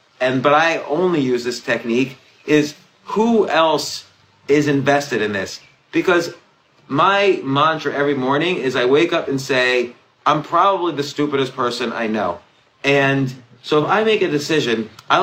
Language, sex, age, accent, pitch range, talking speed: English, male, 30-49, American, 130-160 Hz, 160 wpm